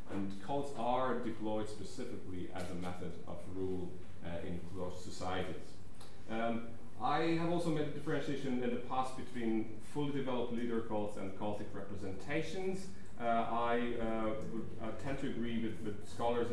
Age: 30-49